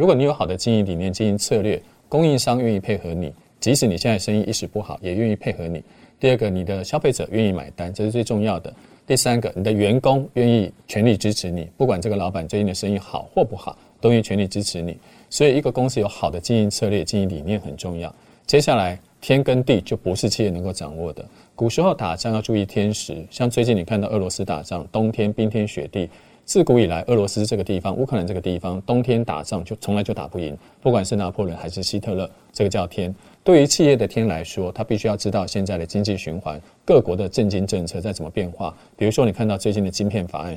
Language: Chinese